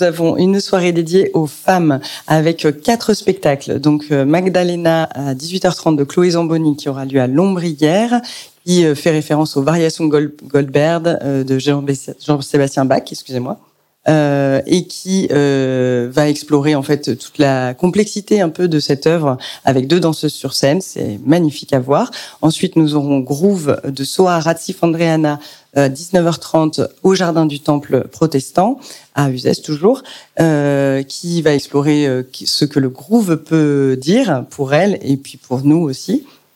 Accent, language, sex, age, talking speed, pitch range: French, French, female, 40-59, 155 wpm, 140-180 Hz